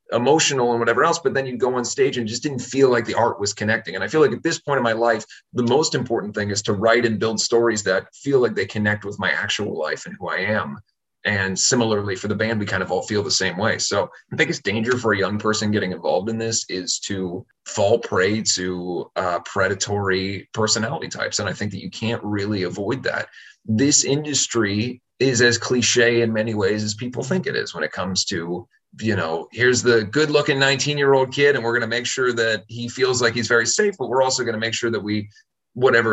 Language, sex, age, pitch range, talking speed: English, male, 30-49, 105-125 Hz, 240 wpm